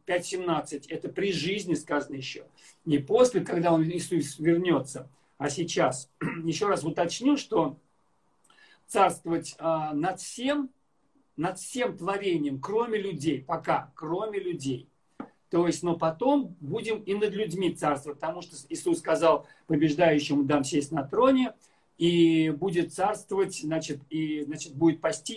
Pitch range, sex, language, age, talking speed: 160-210 Hz, male, Russian, 50-69, 130 wpm